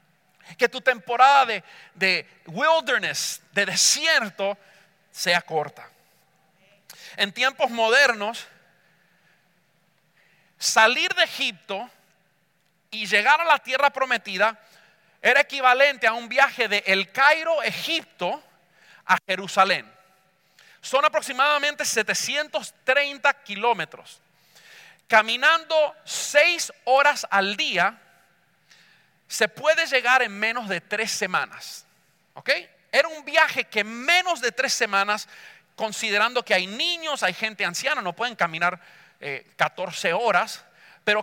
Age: 40-59